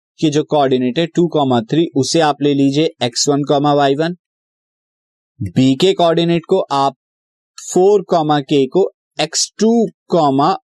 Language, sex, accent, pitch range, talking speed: Hindi, male, native, 130-170 Hz, 130 wpm